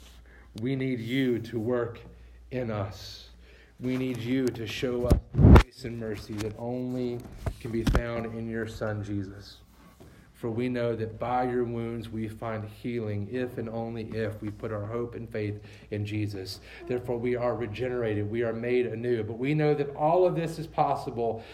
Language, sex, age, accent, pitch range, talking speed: English, male, 40-59, American, 110-140 Hz, 180 wpm